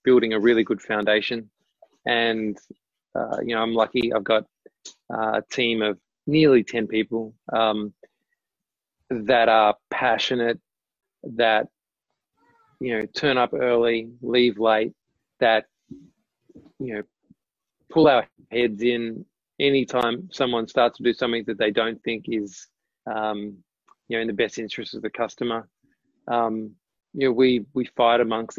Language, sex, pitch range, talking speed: English, male, 110-120 Hz, 145 wpm